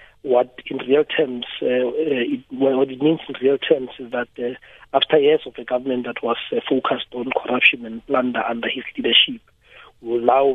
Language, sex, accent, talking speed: English, male, South African, 190 wpm